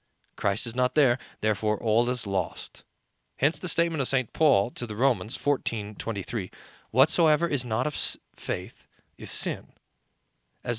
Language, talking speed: English, 145 wpm